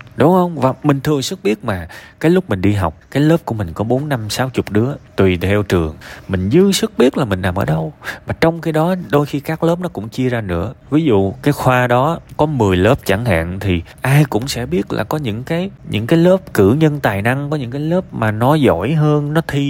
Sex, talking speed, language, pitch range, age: male, 255 wpm, Vietnamese, 100-145 Hz, 20-39